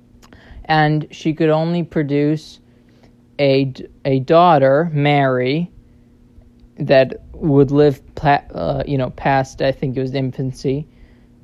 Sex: male